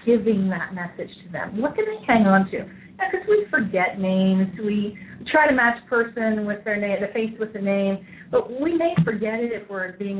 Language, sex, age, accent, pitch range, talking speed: English, female, 30-49, American, 180-225 Hz, 210 wpm